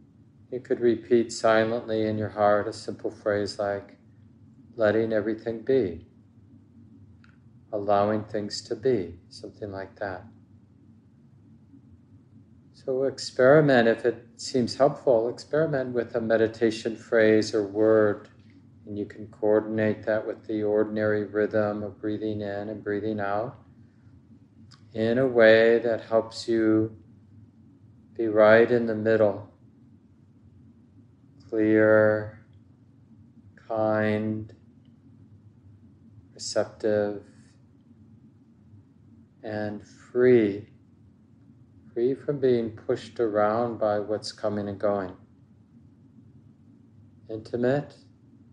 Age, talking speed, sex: 40-59, 95 wpm, male